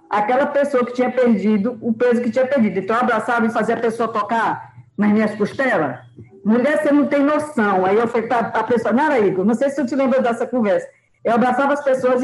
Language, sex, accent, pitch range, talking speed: Portuguese, female, Brazilian, 200-255 Hz, 230 wpm